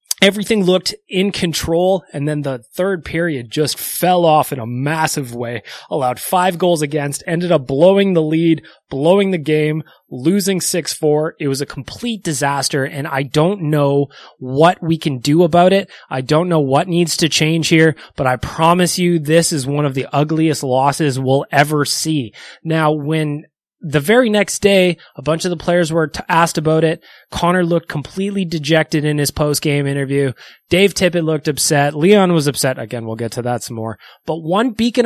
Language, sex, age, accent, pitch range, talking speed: English, male, 20-39, American, 145-180 Hz, 185 wpm